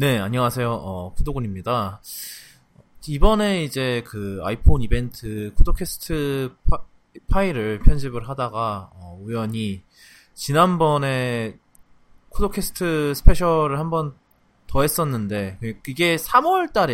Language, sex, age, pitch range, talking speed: English, male, 20-39, 110-155 Hz, 80 wpm